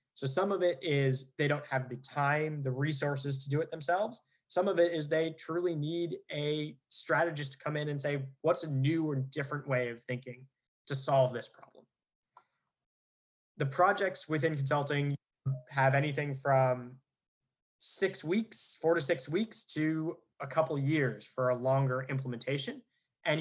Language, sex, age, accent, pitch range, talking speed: English, male, 20-39, American, 130-160 Hz, 165 wpm